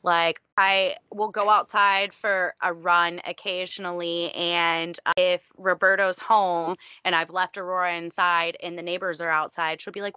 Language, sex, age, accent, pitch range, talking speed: English, female, 20-39, American, 175-220 Hz, 155 wpm